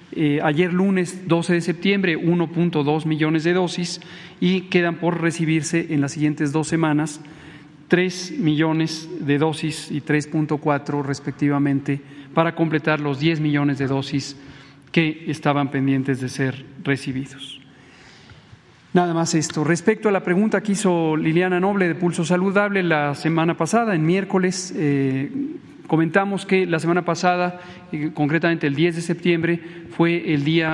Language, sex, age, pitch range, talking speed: Spanish, male, 40-59, 150-180 Hz, 140 wpm